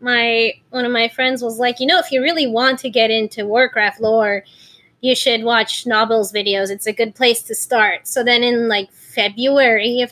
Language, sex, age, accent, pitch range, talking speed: English, female, 20-39, American, 225-270 Hz, 210 wpm